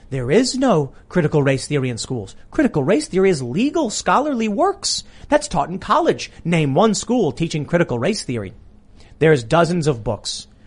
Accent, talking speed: American, 170 wpm